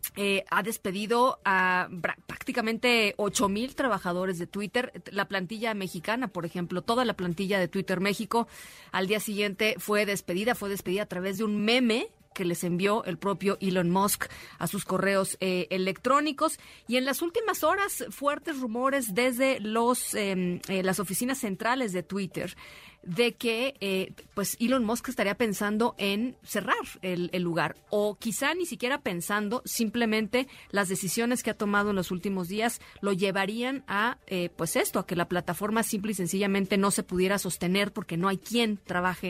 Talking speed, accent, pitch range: 170 wpm, Mexican, 185-230 Hz